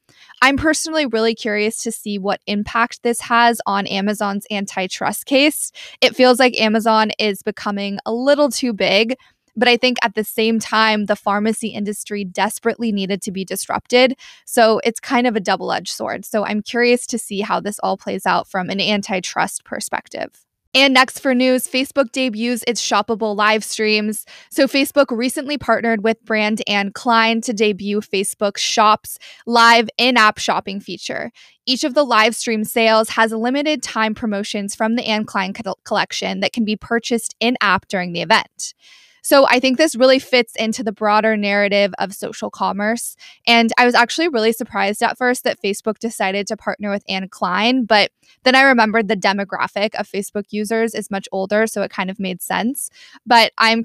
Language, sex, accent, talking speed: English, female, American, 175 wpm